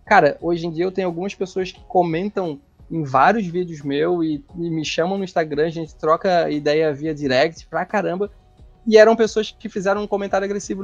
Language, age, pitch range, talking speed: Portuguese, 20-39, 150-195 Hz, 200 wpm